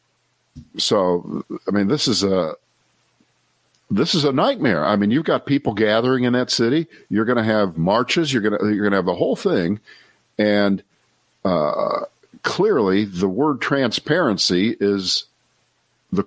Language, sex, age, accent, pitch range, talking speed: English, male, 50-69, American, 105-140 Hz, 145 wpm